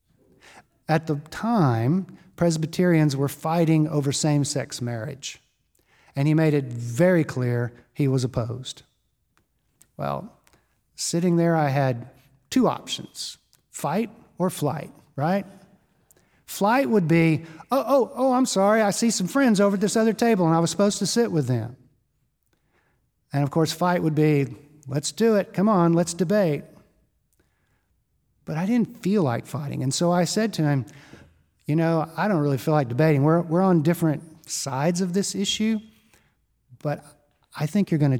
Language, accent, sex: English, American, male